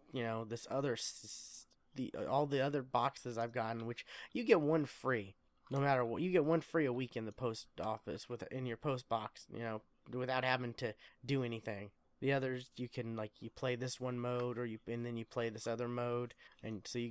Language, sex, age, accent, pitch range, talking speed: English, male, 20-39, American, 115-130 Hz, 220 wpm